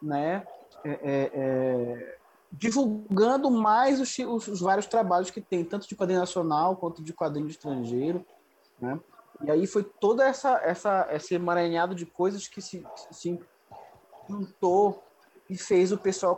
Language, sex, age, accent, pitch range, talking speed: Portuguese, male, 20-39, Brazilian, 160-210 Hz, 145 wpm